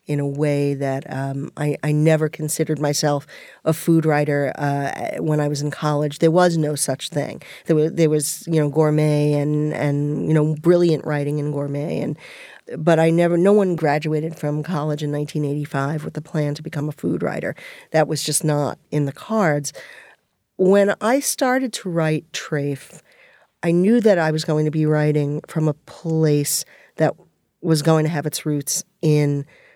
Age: 40-59